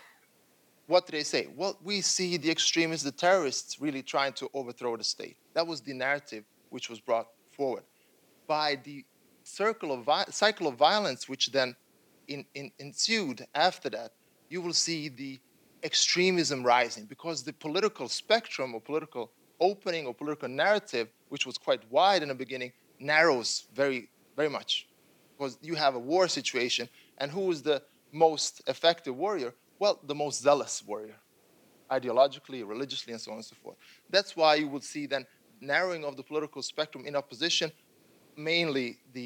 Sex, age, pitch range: male, 30-49, 130-165 Hz